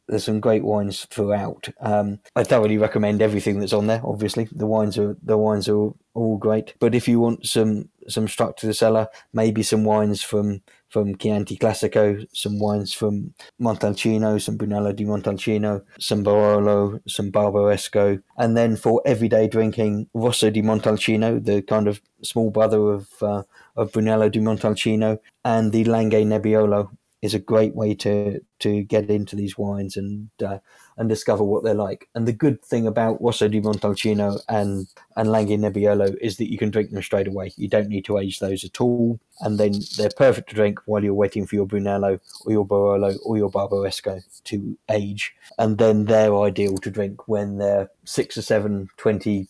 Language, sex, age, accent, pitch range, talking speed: English, male, 20-39, British, 100-110 Hz, 185 wpm